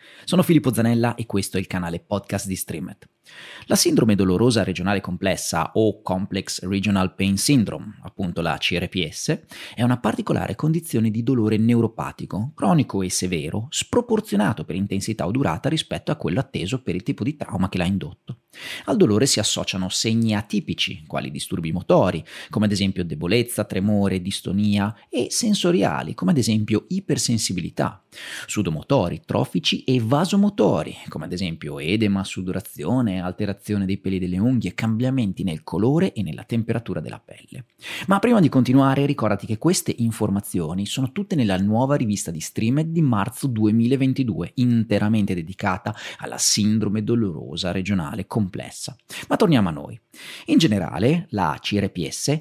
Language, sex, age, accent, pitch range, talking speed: Italian, male, 30-49, native, 95-130 Hz, 145 wpm